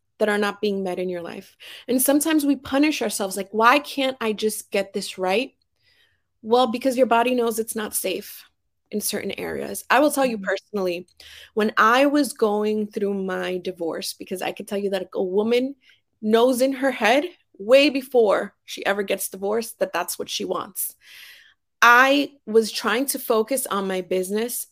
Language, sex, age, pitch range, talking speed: English, female, 20-39, 185-235 Hz, 180 wpm